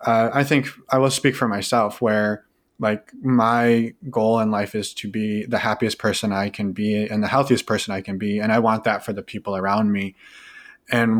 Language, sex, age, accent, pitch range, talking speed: English, male, 20-39, American, 105-125 Hz, 215 wpm